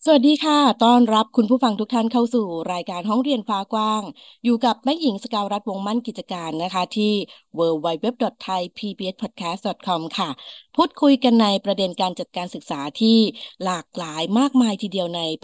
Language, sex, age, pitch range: Thai, female, 20-39, 185-250 Hz